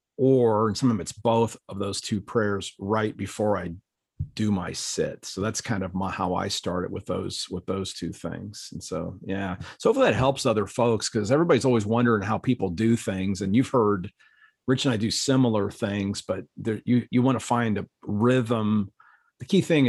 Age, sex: 40-59, male